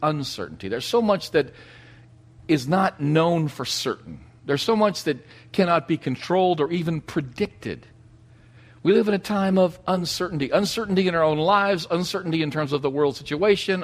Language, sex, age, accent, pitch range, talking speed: English, male, 50-69, American, 120-185 Hz, 170 wpm